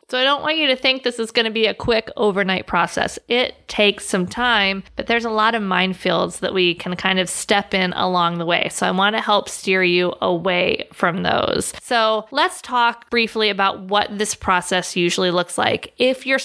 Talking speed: 215 wpm